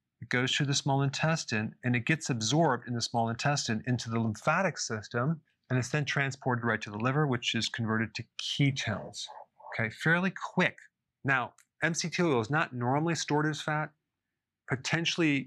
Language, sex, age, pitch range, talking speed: English, male, 40-59, 120-150 Hz, 170 wpm